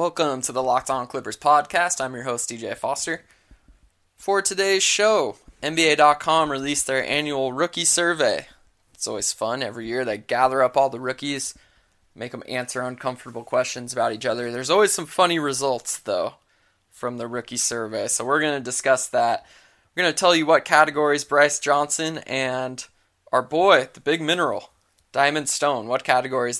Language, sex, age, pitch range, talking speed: English, male, 20-39, 120-155 Hz, 165 wpm